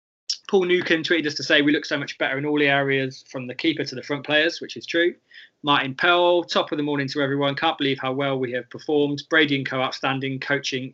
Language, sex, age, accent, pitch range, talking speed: English, male, 20-39, British, 135-170 Hz, 245 wpm